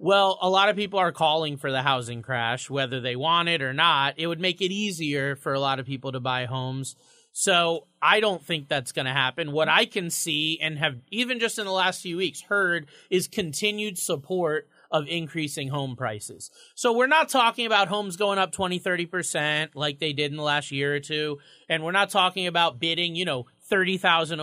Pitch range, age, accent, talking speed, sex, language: 145-195 Hz, 30-49, American, 215 wpm, male, English